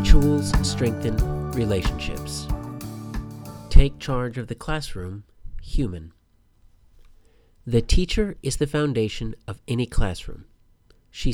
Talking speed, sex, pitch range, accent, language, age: 95 wpm, male, 100-135 Hz, American, English, 40-59